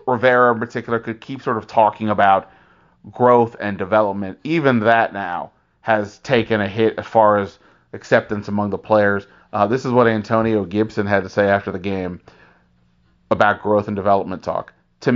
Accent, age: American, 30-49